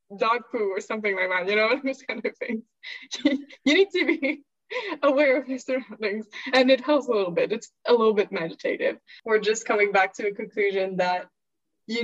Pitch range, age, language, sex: 200-255 Hz, 10-29, English, female